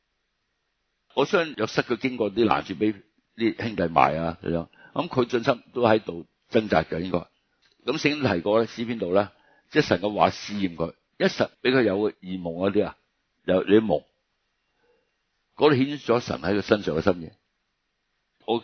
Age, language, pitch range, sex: 50-69, Chinese, 85-120 Hz, male